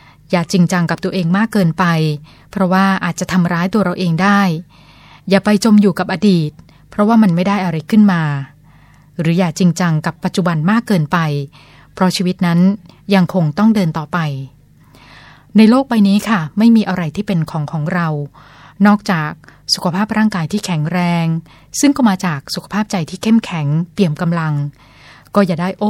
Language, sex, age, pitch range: Thai, female, 20-39, 155-200 Hz